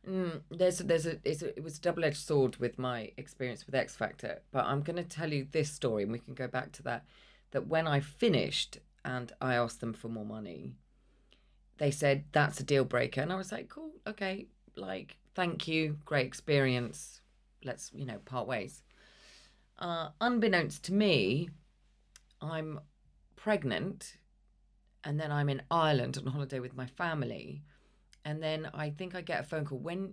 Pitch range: 130-170 Hz